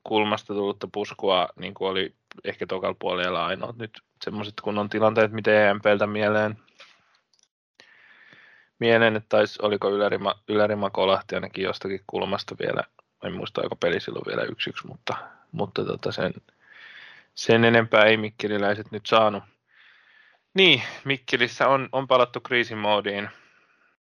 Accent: native